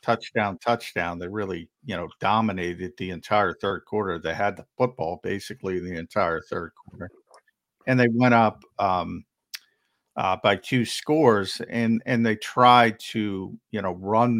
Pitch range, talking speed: 105-135 Hz, 155 wpm